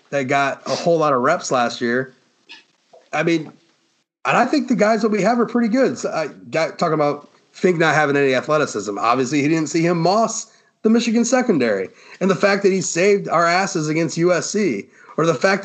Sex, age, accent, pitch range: male, 30-49, American, 140-195 Hz